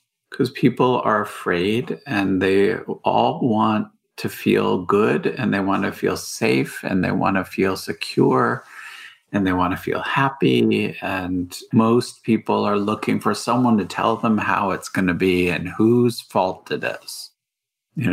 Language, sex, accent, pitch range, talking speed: English, male, American, 90-110 Hz, 165 wpm